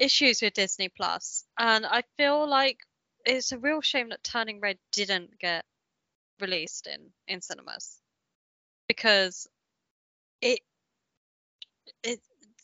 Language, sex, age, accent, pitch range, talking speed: English, female, 20-39, British, 195-255 Hz, 110 wpm